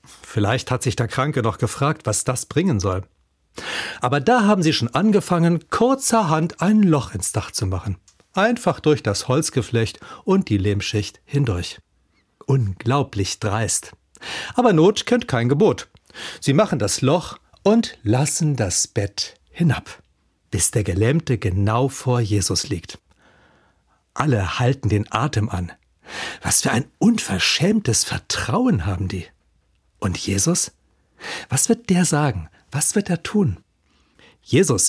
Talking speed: 135 wpm